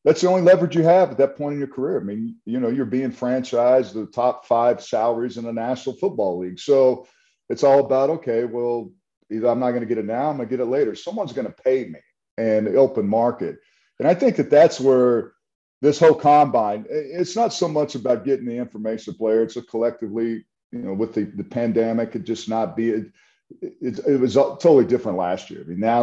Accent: American